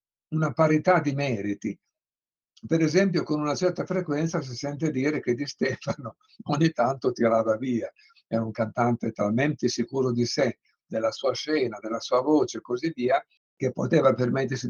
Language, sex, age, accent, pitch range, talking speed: Italian, male, 60-79, native, 115-145 Hz, 160 wpm